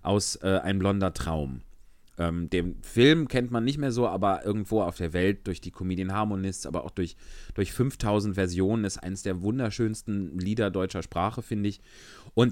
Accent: German